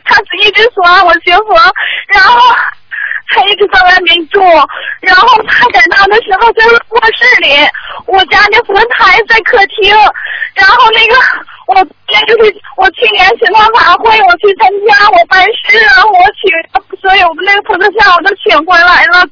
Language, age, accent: Chinese, 30-49, native